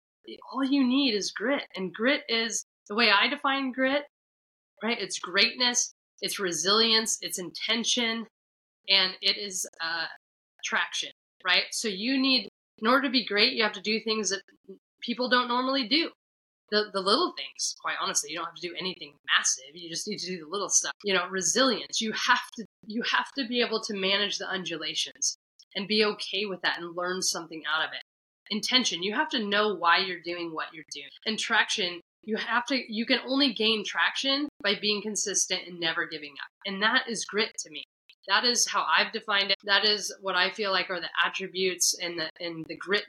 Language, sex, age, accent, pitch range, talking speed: English, female, 20-39, American, 180-235 Hz, 200 wpm